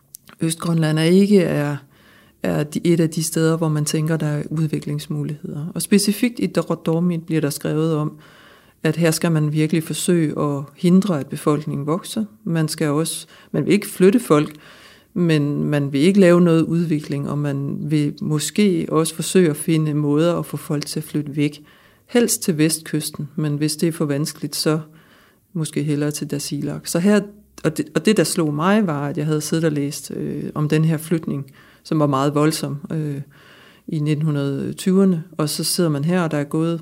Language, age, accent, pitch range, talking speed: Danish, 60-79, native, 150-170 Hz, 190 wpm